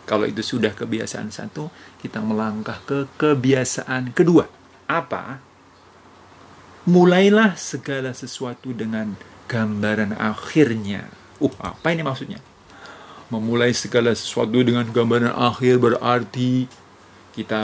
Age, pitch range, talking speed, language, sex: 40-59, 110-135 Hz, 100 wpm, Indonesian, male